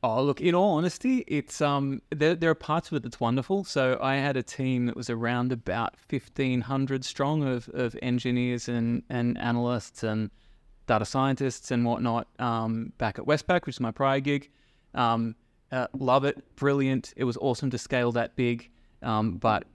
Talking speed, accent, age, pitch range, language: 180 wpm, Australian, 20-39, 115-135 Hz, English